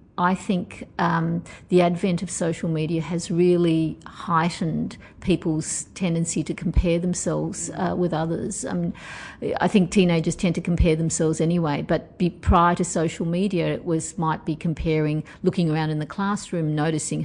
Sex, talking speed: female, 160 wpm